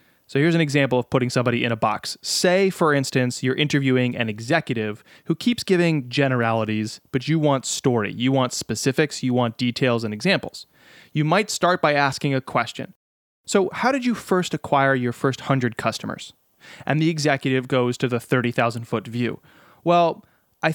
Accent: American